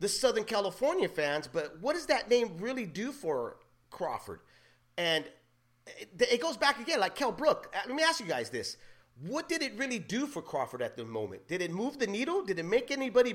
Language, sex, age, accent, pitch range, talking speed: English, male, 40-59, American, 180-300 Hz, 210 wpm